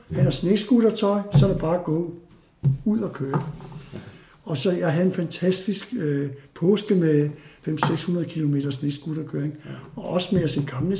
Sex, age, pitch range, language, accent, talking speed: male, 60-79, 150-190 Hz, Danish, native, 160 wpm